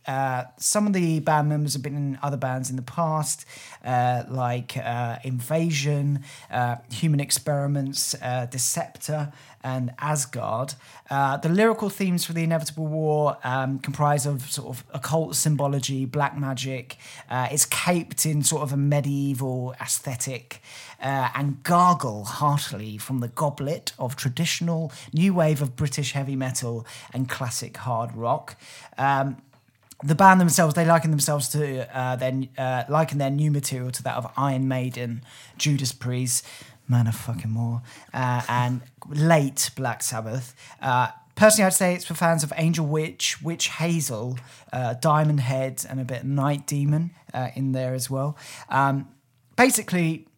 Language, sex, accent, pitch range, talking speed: English, male, British, 125-150 Hz, 155 wpm